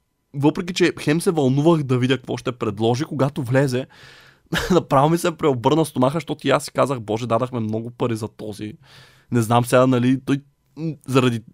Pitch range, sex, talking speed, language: 125-150 Hz, male, 175 wpm, Bulgarian